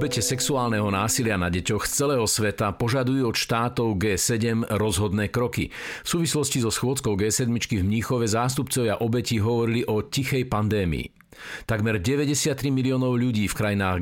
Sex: male